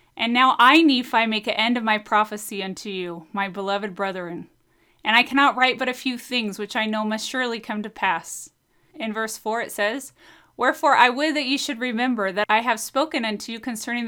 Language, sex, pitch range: English, female, 205-265 Hz